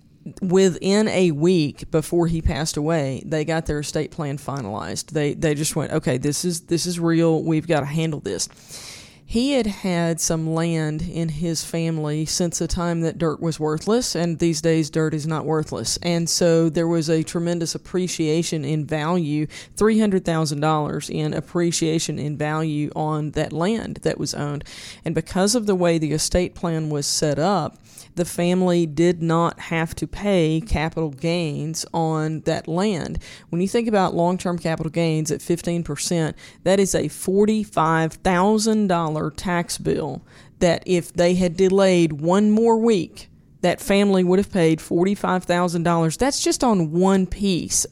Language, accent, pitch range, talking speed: English, American, 155-180 Hz, 160 wpm